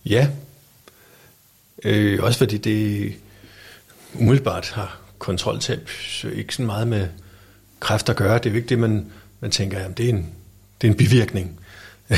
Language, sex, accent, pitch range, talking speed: Danish, male, native, 100-120 Hz, 155 wpm